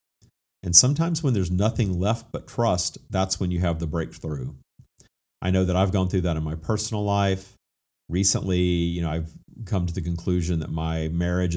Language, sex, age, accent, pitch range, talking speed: English, male, 50-69, American, 85-100 Hz, 185 wpm